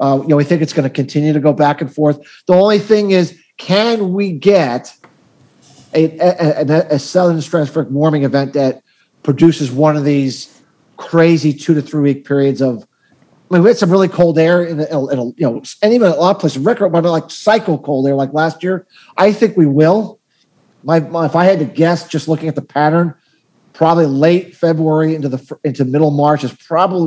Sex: male